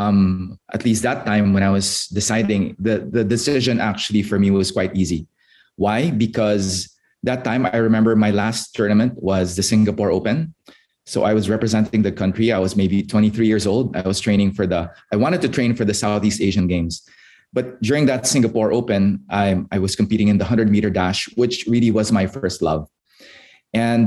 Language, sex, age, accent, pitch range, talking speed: English, male, 20-39, Filipino, 95-115 Hz, 195 wpm